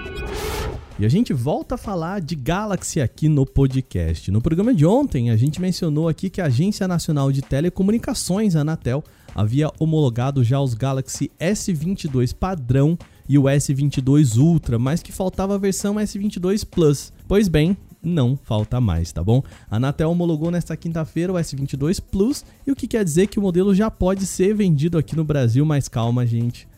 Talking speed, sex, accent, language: 175 wpm, male, Brazilian, Portuguese